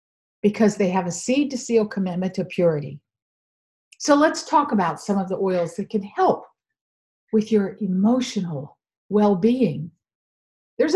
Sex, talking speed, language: female, 140 wpm, English